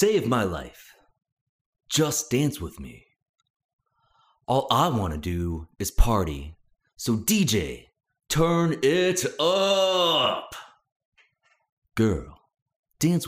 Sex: male